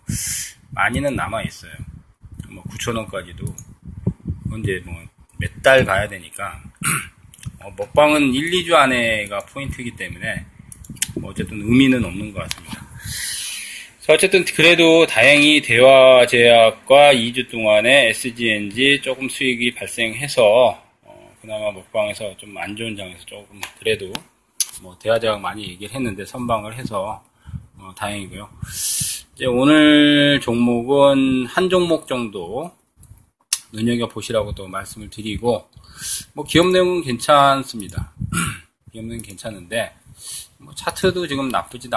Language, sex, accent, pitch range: Korean, male, native, 105-145 Hz